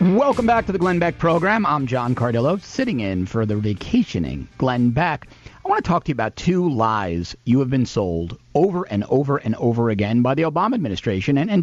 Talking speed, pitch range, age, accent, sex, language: 215 wpm, 100-150 Hz, 40-59, American, male, English